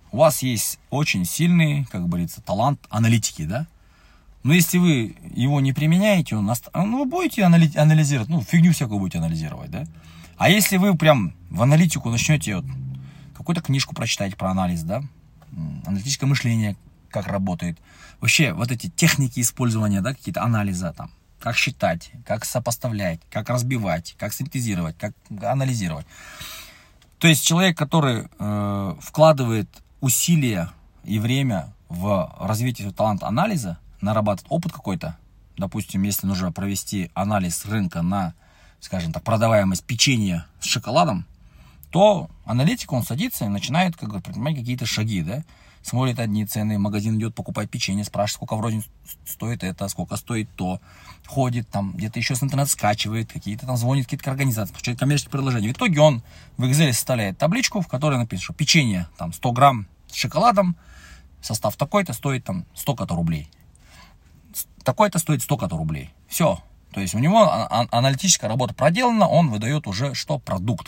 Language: Russian